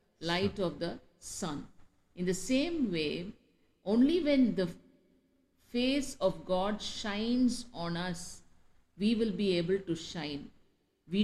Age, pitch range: 50-69, 175-220 Hz